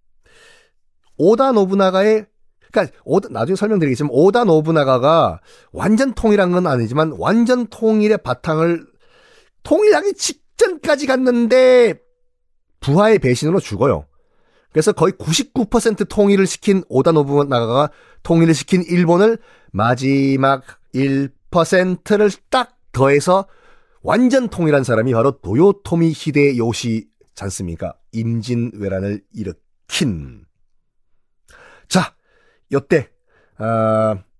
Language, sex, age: Korean, male, 40-59